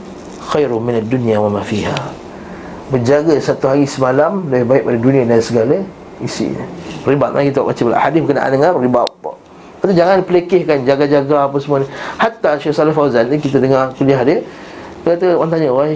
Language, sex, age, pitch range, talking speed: Malay, male, 30-49, 130-160 Hz, 175 wpm